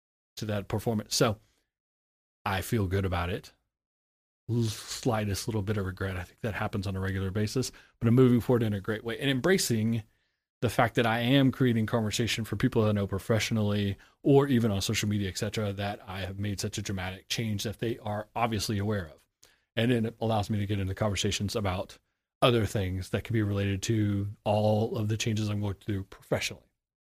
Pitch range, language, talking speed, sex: 100-120 Hz, English, 195 wpm, male